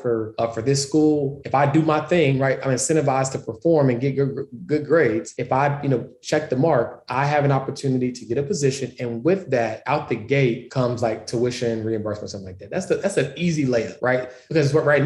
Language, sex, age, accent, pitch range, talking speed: English, male, 20-39, American, 115-150 Hz, 230 wpm